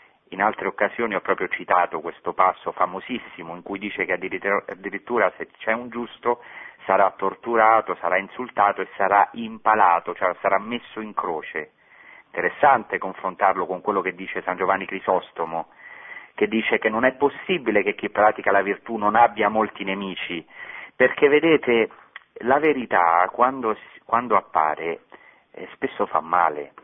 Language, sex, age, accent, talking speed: Italian, male, 40-59, native, 145 wpm